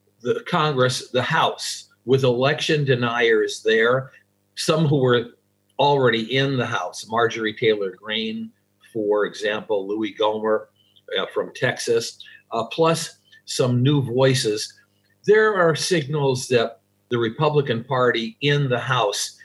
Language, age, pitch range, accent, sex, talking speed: English, 50-69, 115-165 Hz, American, male, 125 wpm